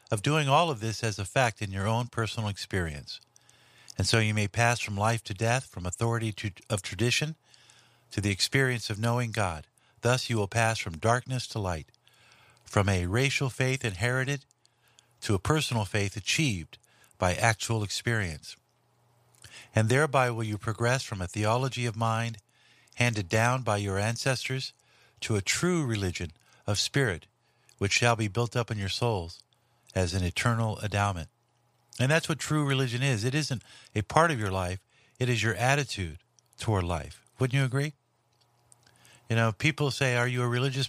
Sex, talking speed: male, 170 wpm